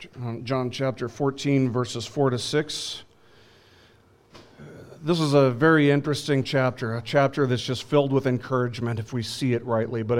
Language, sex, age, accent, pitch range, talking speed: English, male, 40-59, American, 115-140 Hz, 155 wpm